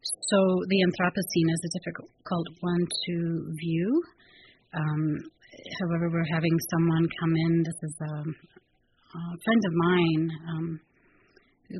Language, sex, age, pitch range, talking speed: English, female, 30-49, 160-180 Hz, 125 wpm